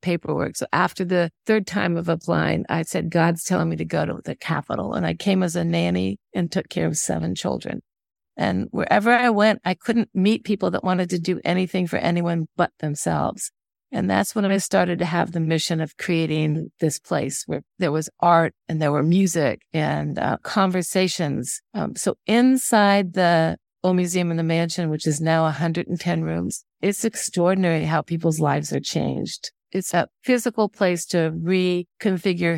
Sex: female